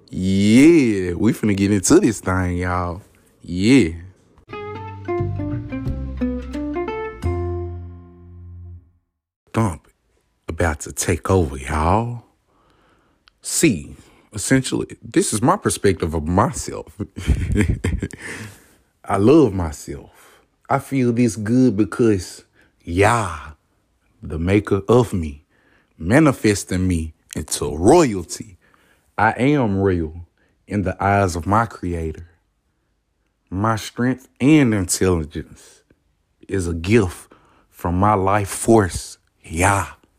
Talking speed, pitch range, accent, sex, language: 90 wpm, 85-110 Hz, American, male, English